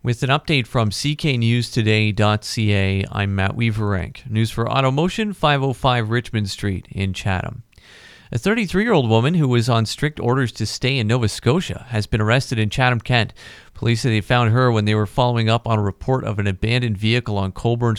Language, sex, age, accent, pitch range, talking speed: English, male, 40-59, American, 105-125 Hz, 180 wpm